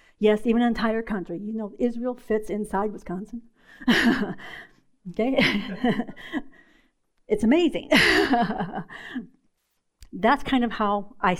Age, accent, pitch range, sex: 50-69, American, 200-260 Hz, female